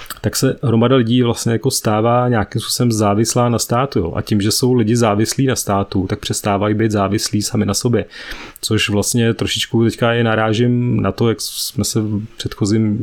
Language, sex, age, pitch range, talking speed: Czech, male, 30-49, 105-120 Hz, 190 wpm